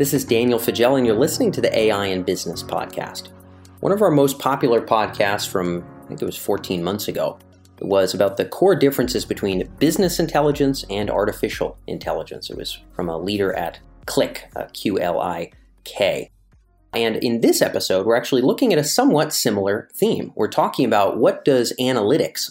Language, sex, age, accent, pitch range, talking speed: English, male, 30-49, American, 95-130 Hz, 175 wpm